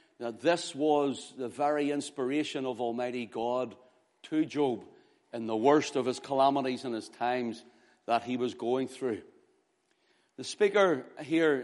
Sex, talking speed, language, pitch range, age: male, 145 wpm, English, 140-190 Hz, 60-79